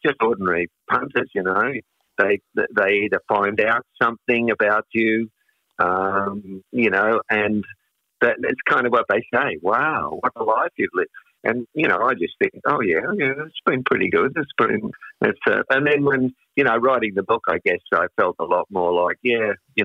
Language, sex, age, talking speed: English, male, 50-69, 195 wpm